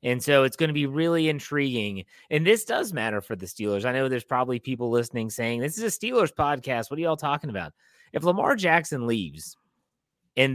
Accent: American